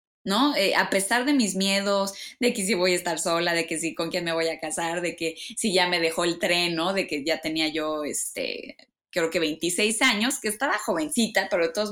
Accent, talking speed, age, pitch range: Mexican, 255 wpm, 20-39, 175-230 Hz